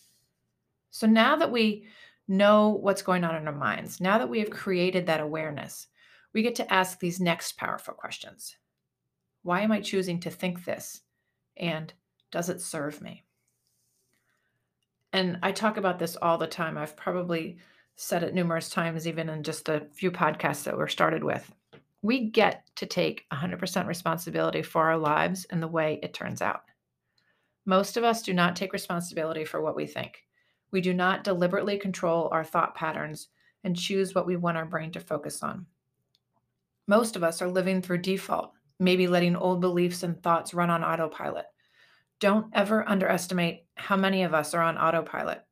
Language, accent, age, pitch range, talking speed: English, American, 40-59, 165-195 Hz, 175 wpm